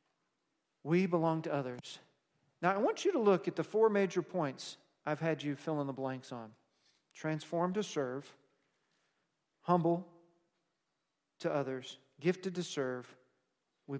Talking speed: 140 wpm